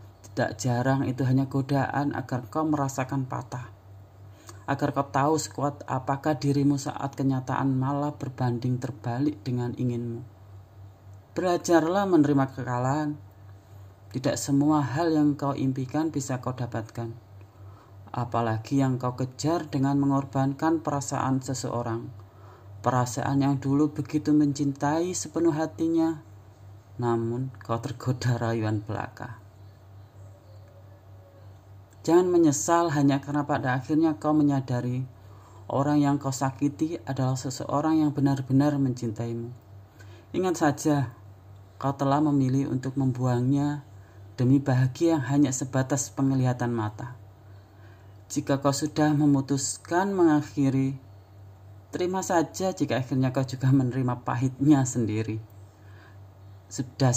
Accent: native